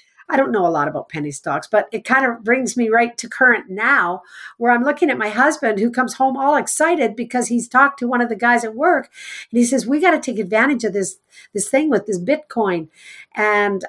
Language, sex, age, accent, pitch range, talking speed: English, female, 50-69, American, 190-250 Hz, 235 wpm